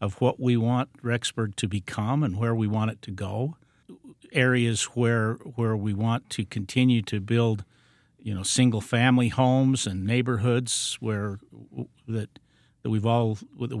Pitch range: 105-125 Hz